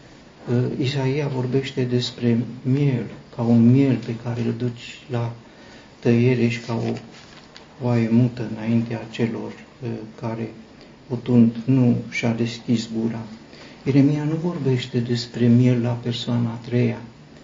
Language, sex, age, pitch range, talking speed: Romanian, male, 50-69, 115-130 Hz, 120 wpm